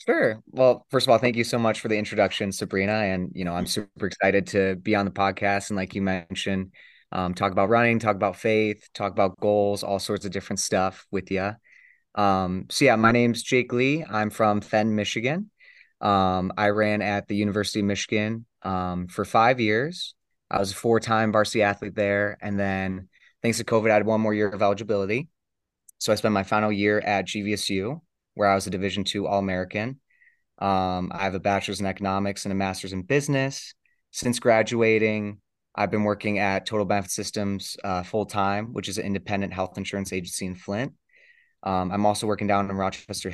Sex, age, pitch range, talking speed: male, 20-39, 95-110 Hz, 195 wpm